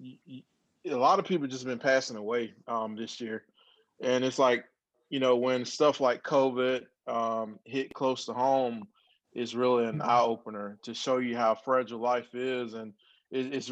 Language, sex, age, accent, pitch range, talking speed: English, male, 20-39, American, 120-135 Hz, 165 wpm